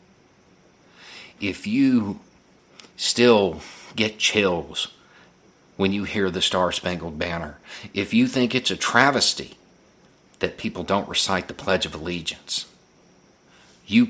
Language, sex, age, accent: English, male, 50-69, American